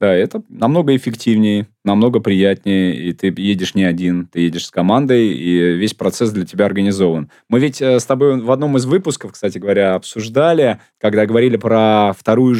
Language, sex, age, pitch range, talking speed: Russian, male, 20-39, 100-125 Hz, 170 wpm